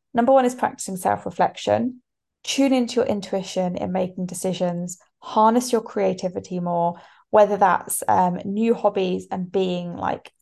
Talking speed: 145 wpm